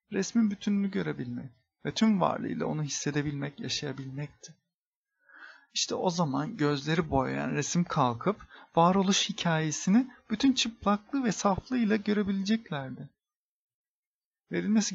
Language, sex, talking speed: Turkish, male, 95 wpm